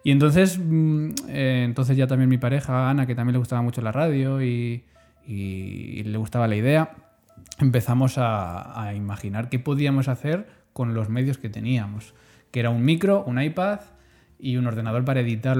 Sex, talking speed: male, 175 wpm